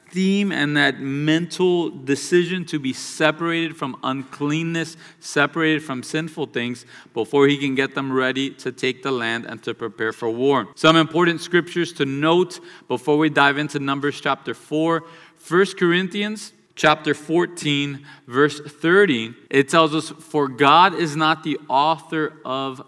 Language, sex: English, male